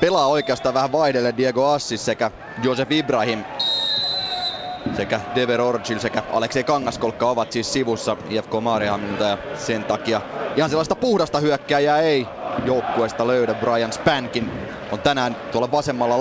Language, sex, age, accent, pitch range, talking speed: Finnish, male, 30-49, native, 115-145 Hz, 135 wpm